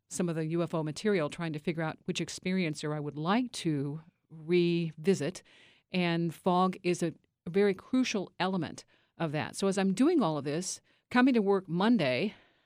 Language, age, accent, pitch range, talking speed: English, 50-69, American, 160-200 Hz, 175 wpm